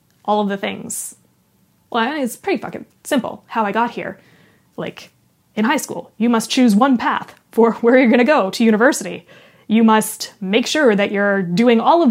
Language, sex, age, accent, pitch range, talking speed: English, female, 20-39, American, 210-280 Hz, 195 wpm